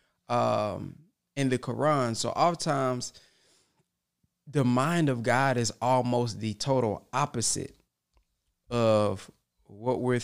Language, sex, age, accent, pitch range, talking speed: English, male, 20-39, American, 115-135 Hz, 105 wpm